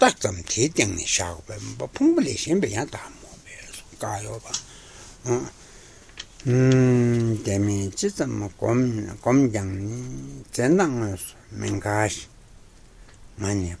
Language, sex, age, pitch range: Italian, male, 60-79, 100-120 Hz